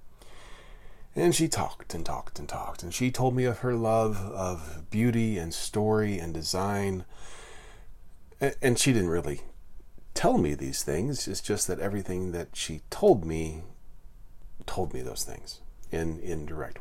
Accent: American